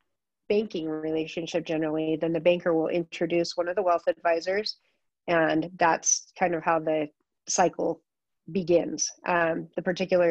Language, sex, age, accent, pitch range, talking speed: English, female, 30-49, American, 160-180 Hz, 140 wpm